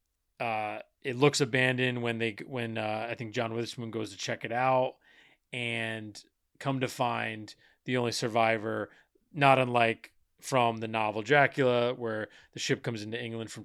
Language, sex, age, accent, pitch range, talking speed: English, male, 30-49, American, 115-135 Hz, 160 wpm